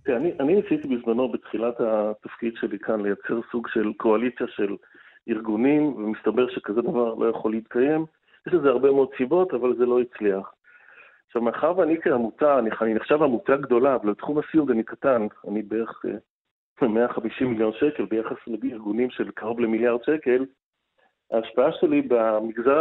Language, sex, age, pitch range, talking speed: Hebrew, male, 40-59, 115-145 Hz, 145 wpm